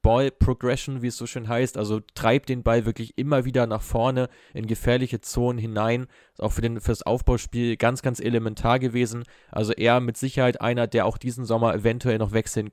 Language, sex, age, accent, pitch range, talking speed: German, male, 20-39, German, 110-125 Hz, 200 wpm